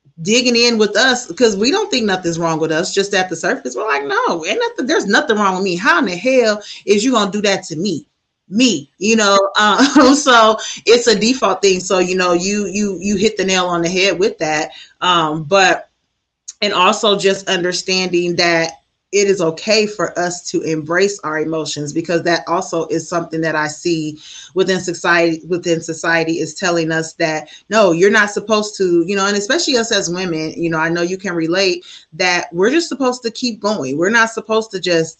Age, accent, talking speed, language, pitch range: 30-49, American, 210 wpm, English, 165-210 Hz